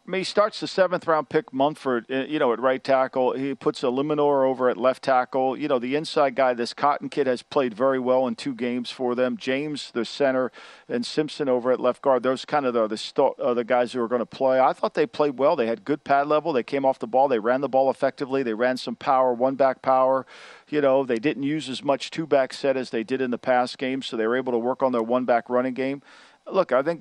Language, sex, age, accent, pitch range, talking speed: English, male, 50-69, American, 125-150 Hz, 260 wpm